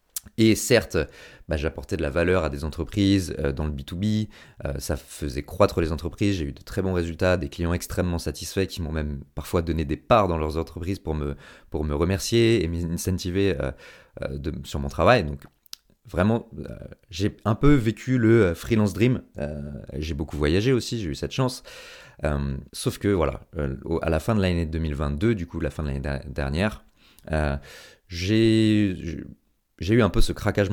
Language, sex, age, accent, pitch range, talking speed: French, male, 30-49, French, 80-105 Hz, 190 wpm